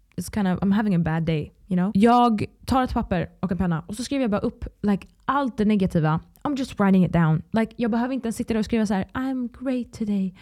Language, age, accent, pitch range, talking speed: Swedish, 20-39, Norwegian, 175-215 Hz, 260 wpm